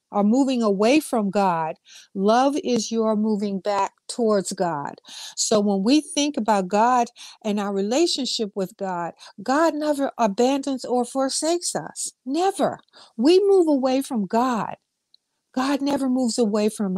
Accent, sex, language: American, female, English